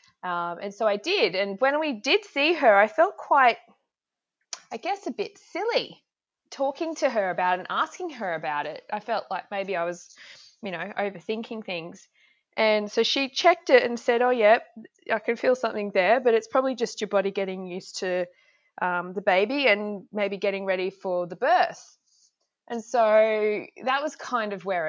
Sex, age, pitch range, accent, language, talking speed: female, 20-39, 185-250 Hz, Australian, English, 195 wpm